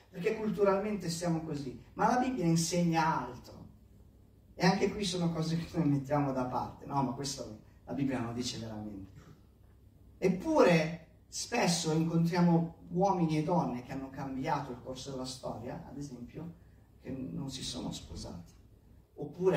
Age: 30-49